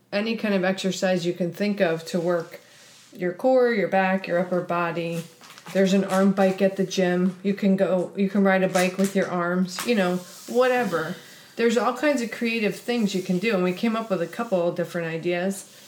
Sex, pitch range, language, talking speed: female, 180-200 Hz, English, 215 wpm